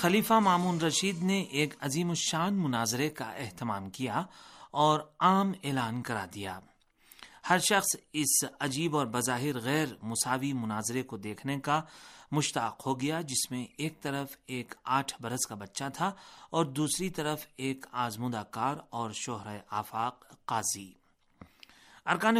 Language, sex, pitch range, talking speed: Urdu, male, 120-165 Hz, 140 wpm